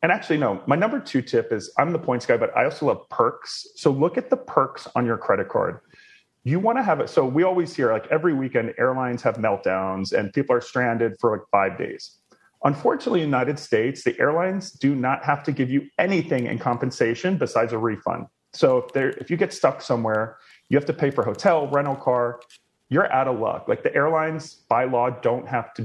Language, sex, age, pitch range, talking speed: English, male, 30-49, 120-175 Hz, 220 wpm